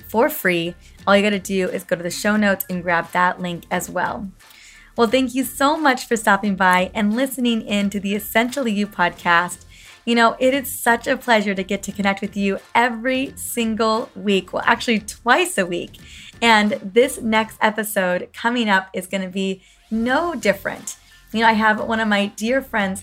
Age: 20-39